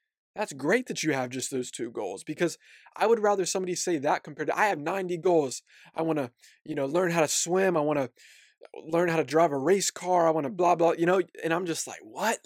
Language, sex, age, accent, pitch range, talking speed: English, male, 20-39, American, 140-180 Hz, 255 wpm